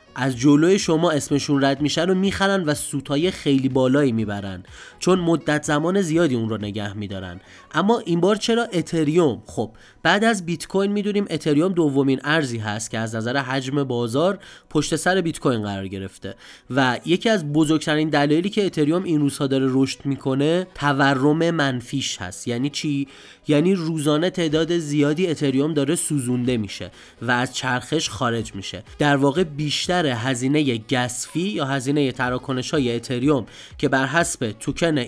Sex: male